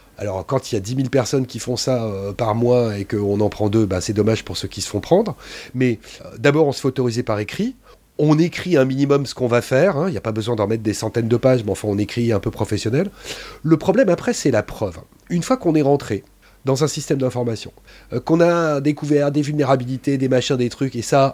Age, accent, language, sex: 30-49, French, French, male